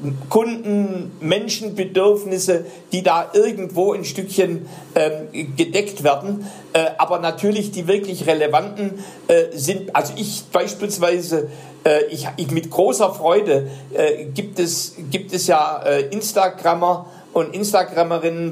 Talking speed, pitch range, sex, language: 120 wpm, 165-205 Hz, male, German